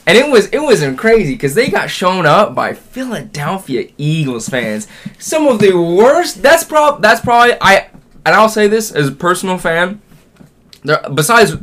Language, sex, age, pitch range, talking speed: English, male, 10-29, 135-190 Hz, 170 wpm